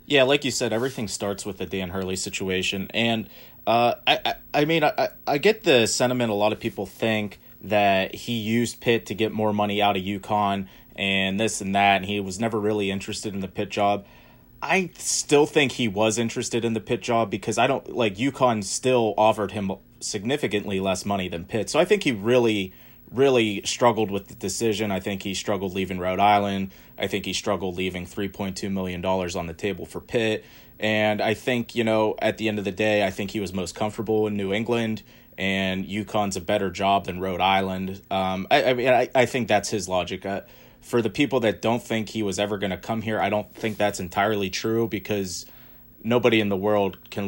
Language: English